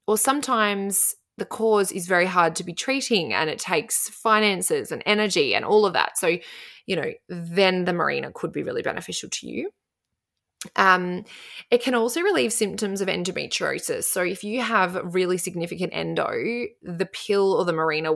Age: 20-39